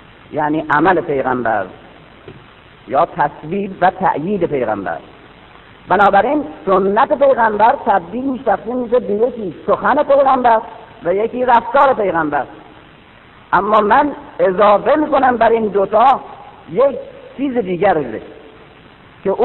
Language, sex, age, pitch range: Persian, female, 50-69, 195-270 Hz